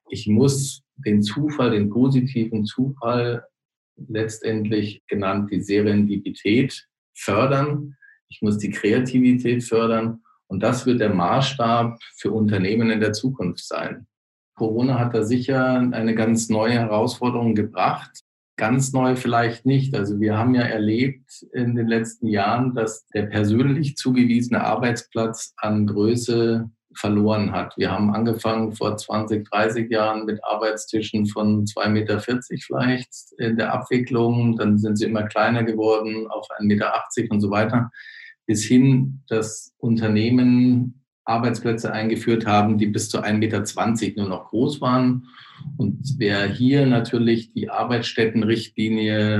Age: 50-69